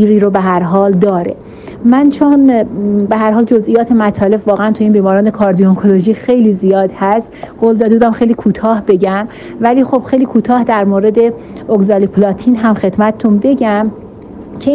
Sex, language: female, Persian